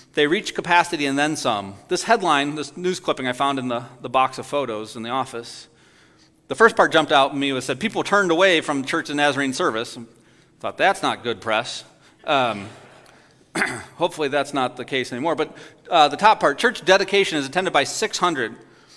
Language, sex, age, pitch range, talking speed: English, male, 40-59, 130-170 Hz, 200 wpm